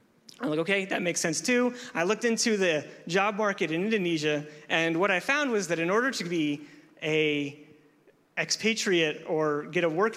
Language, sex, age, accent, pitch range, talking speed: English, male, 30-49, American, 160-210 Hz, 185 wpm